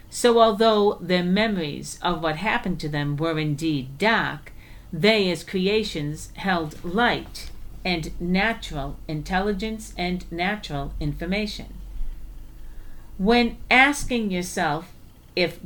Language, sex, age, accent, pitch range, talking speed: English, female, 50-69, American, 155-205 Hz, 105 wpm